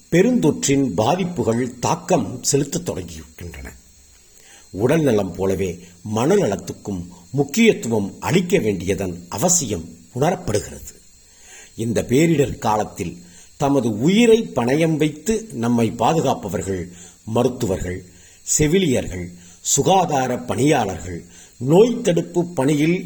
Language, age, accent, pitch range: Tamil, 50-69, native, 95-145 Hz